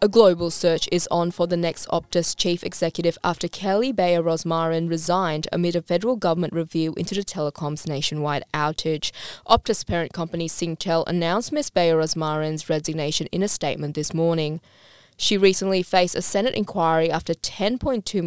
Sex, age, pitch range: female, 20-39, 160-185 Hz